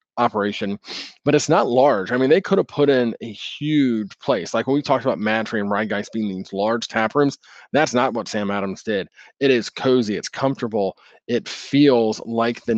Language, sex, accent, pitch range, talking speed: English, male, American, 110-130 Hz, 205 wpm